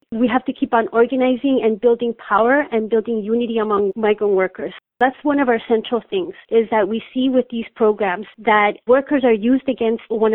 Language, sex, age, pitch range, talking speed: English, female, 30-49, 215-245 Hz, 195 wpm